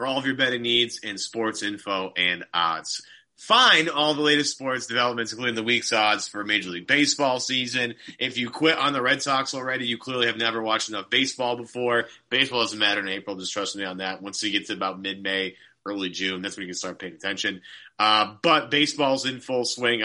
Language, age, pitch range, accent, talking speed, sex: English, 30-49, 105-135 Hz, American, 220 wpm, male